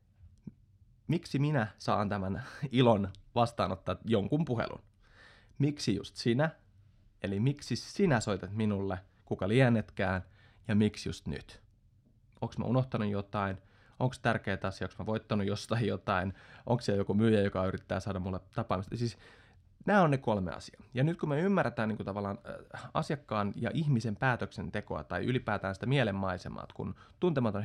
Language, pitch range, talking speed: Finnish, 100-120 Hz, 140 wpm